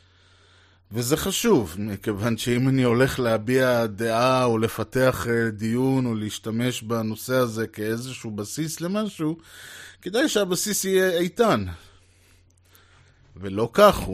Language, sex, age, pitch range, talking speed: Hebrew, male, 20-39, 105-140 Hz, 100 wpm